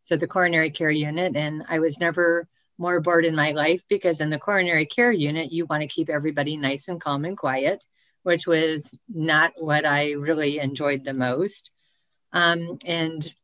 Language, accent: English, American